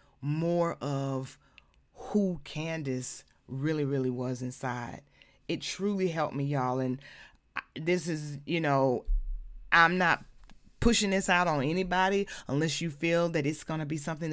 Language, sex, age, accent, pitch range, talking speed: English, female, 30-49, American, 135-175 Hz, 140 wpm